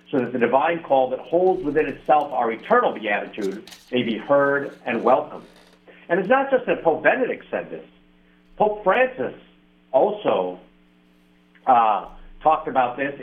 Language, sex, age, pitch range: English, male, 50-69, 140-195 Hz